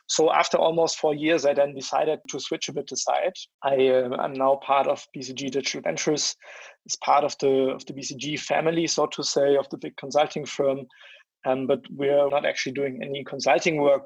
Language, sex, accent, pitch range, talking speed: English, male, German, 135-145 Hz, 200 wpm